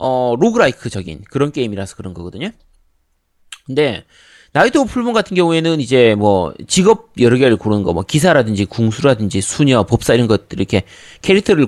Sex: male